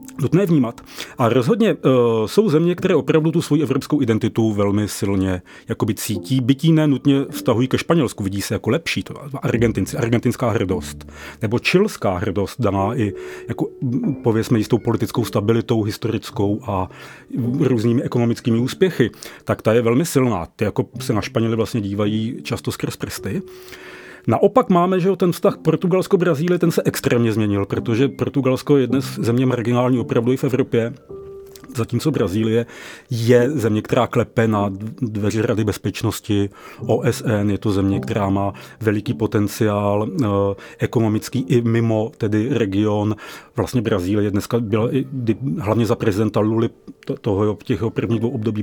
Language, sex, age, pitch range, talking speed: Czech, male, 40-59, 105-130 Hz, 145 wpm